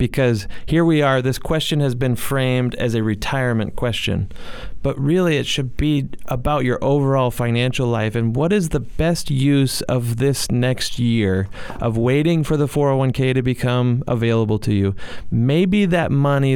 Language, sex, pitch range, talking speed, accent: English, male, 120-140 Hz, 165 wpm, American